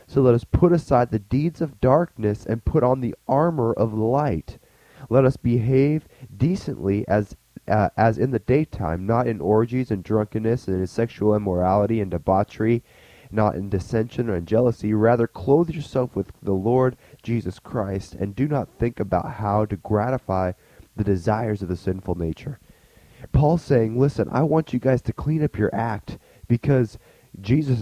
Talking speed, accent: 170 wpm, American